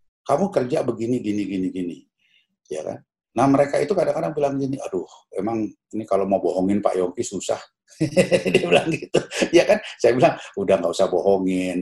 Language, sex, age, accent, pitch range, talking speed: Indonesian, male, 60-79, native, 110-185 Hz, 175 wpm